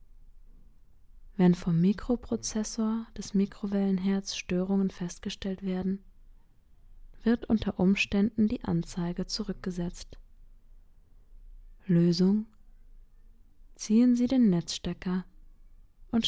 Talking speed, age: 75 wpm, 20-39